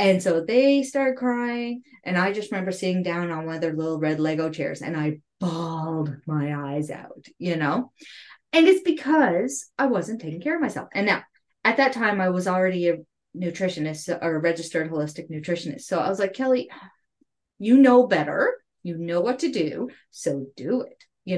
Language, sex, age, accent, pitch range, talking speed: English, female, 30-49, American, 160-220 Hz, 190 wpm